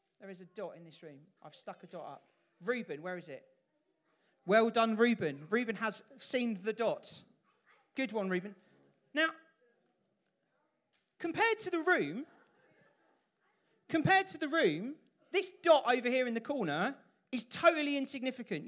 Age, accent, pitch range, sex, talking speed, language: 40-59, British, 205-280 Hz, male, 150 wpm, English